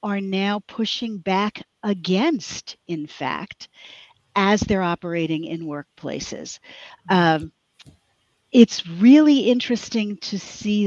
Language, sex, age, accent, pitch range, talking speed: English, female, 50-69, American, 170-220 Hz, 100 wpm